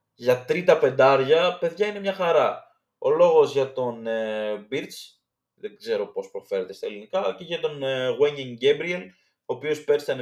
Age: 20-39